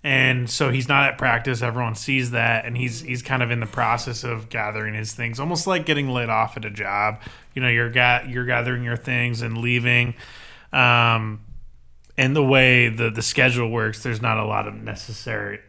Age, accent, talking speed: 20-39, American, 205 wpm